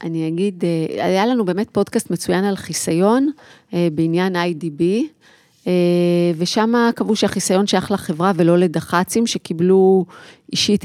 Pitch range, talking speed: 180-220 Hz, 110 wpm